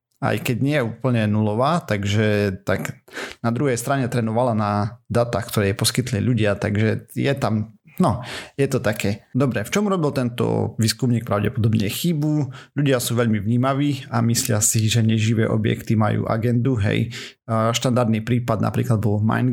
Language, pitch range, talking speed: Slovak, 110-125 Hz, 160 wpm